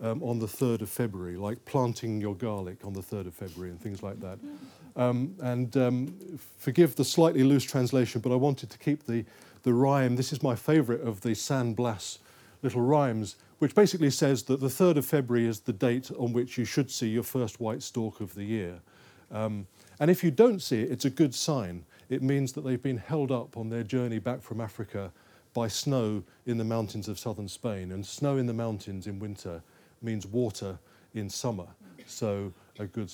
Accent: British